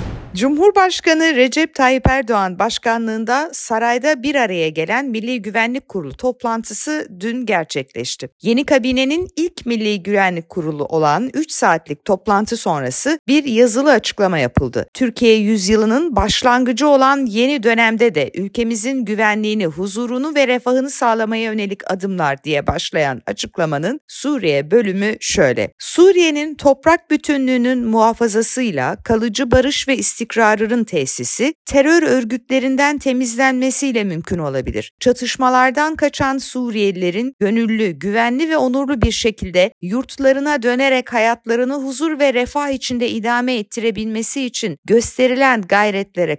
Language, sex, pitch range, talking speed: Turkish, female, 200-265 Hz, 115 wpm